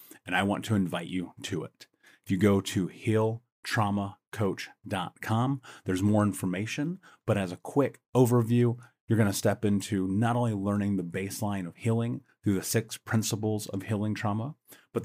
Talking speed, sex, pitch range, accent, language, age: 165 wpm, male, 100-115 Hz, American, English, 30-49